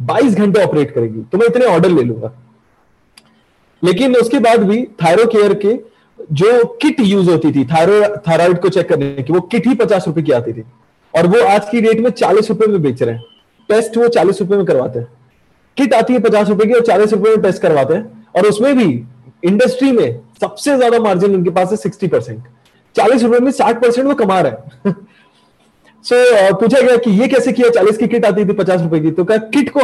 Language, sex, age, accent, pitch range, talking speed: Hindi, male, 30-49, native, 165-230 Hz, 130 wpm